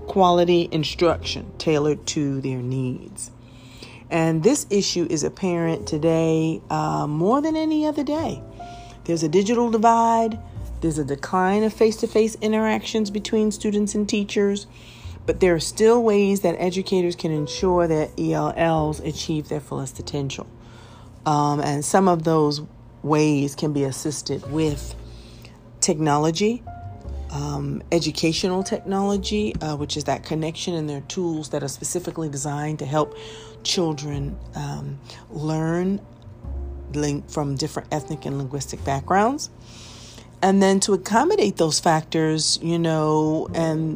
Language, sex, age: English, female, 40-59